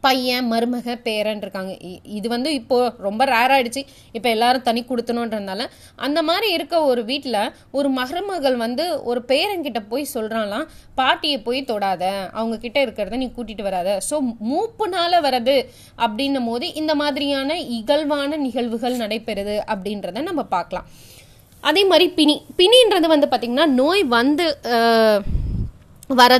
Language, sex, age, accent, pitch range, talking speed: Tamil, female, 20-39, native, 225-285 Hz, 95 wpm